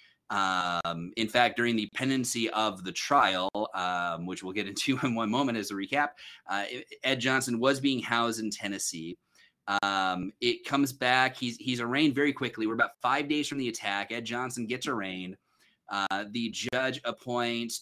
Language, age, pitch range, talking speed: English, 30-49, 110-135 Hz, 175 wpm